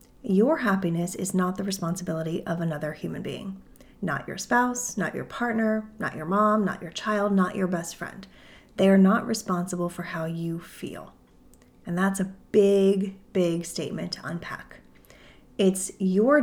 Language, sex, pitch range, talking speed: English, female, 180-215 Hz, 160 wpm